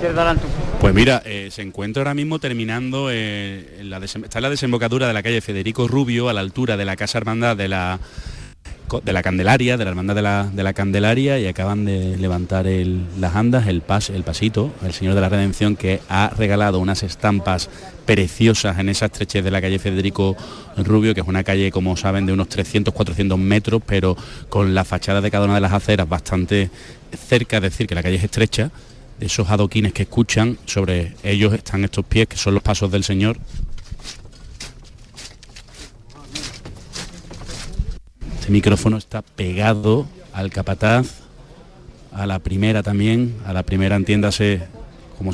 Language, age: Spanish, 30-49